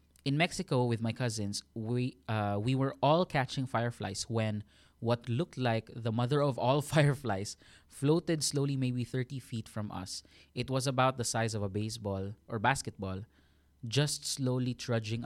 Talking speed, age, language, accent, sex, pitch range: 160 wpm, 20-39, Filipino, native, male, 95-130 Hz